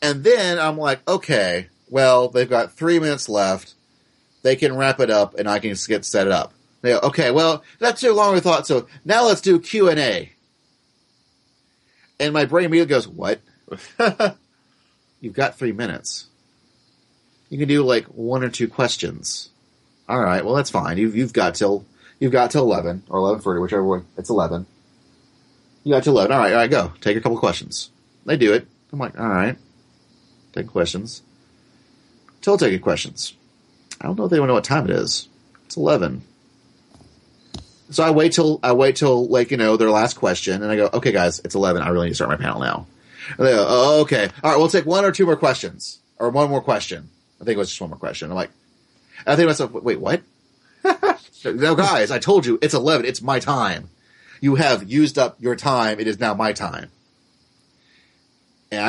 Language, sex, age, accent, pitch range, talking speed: English, male, 30-49, American, 105-155 Hz, 200 wpm